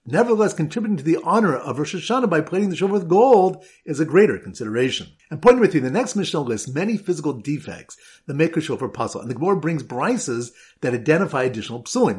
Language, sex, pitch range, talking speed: English, male, 135-190 Hz, 210 wpm